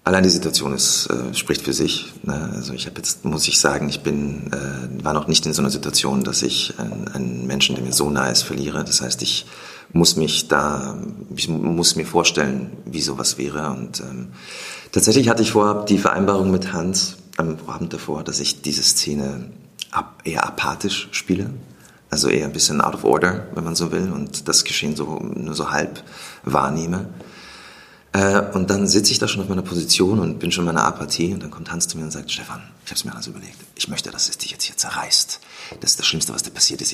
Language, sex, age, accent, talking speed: German, male, 40-59, German, 225 wpm